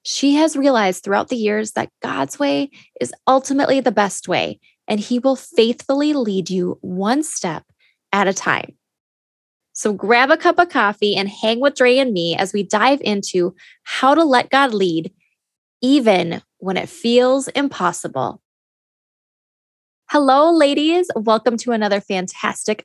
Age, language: 10-29, English